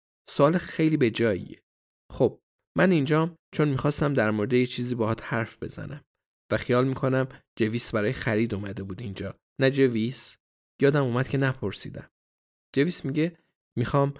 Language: Persian